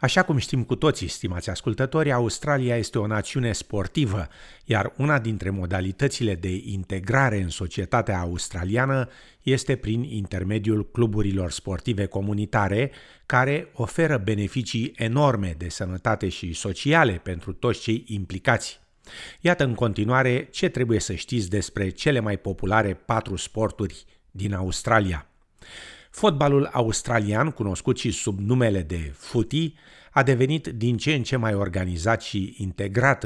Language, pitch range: Romanian, 95-125 Hz